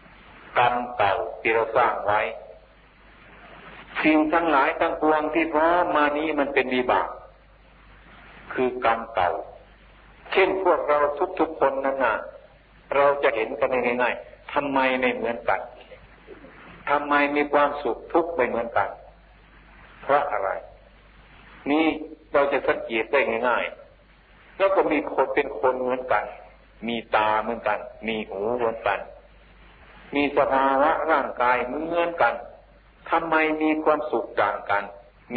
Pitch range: 120-155 Hz